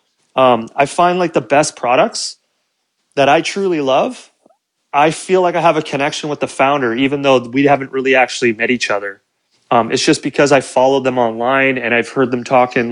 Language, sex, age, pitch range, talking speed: Italian, male, 30-49, 125-150 Hz, 205 wpm